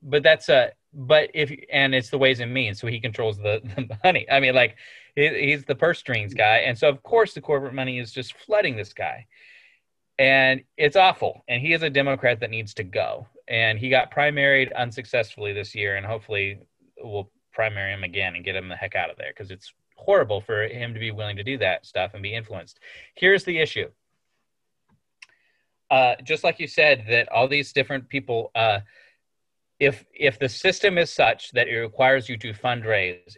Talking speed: 200 wpm